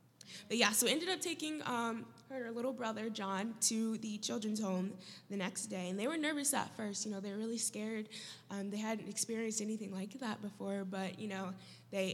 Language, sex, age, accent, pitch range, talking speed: English, female, 10-29, American, 190-225 Hz, 210 wpm